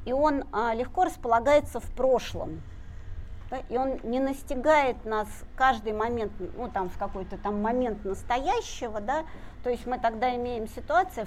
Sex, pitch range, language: female, 200-270 Hz, Russian